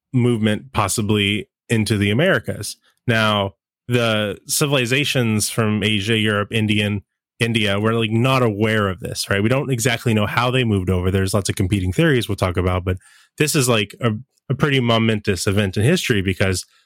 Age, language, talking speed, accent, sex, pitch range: 20-39, English, 170 wpm, American, male, 100-120 Hz